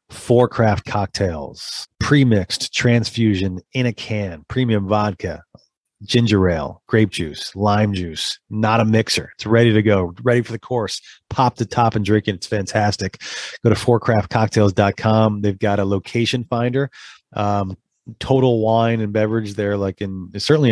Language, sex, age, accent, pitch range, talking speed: English, male, 30-49, American, 100-110 Hz, 150 wpm